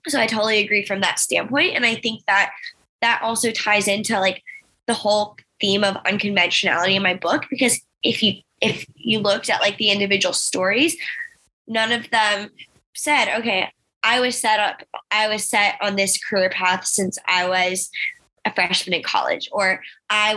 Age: 10-29